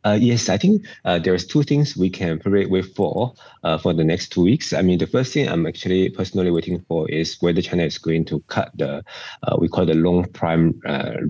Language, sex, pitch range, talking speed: English, male, 85-100 Hz, 235 wpm